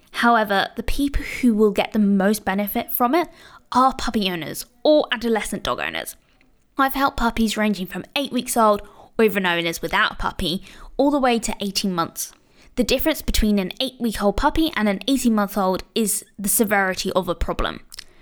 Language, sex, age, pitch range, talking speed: English, female, 20-39, 200-250 Hz, 190 wpm